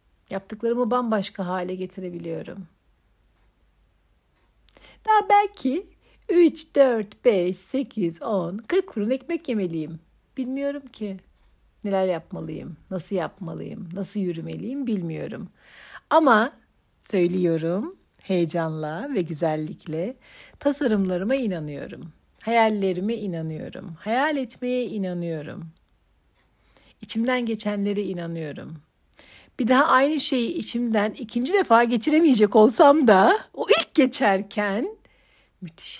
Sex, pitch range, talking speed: female, 175-240 Hz, 90 wpm